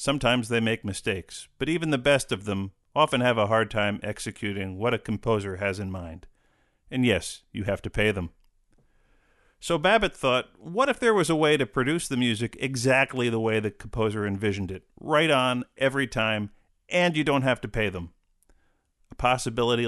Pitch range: 105-135 Hz